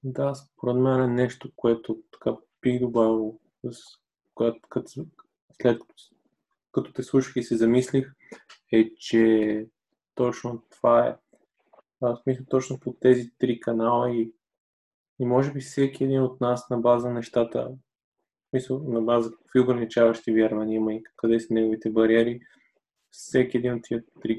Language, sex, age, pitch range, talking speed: Bulgarian, male, 20-39, 115-125 Hz, 150 wpm